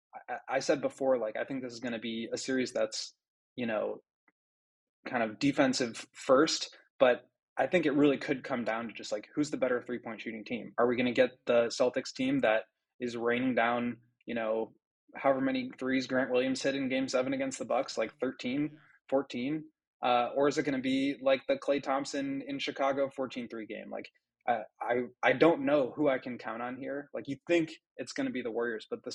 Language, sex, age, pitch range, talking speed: English, male, 20-39, 115-140 Hz, 220 wpm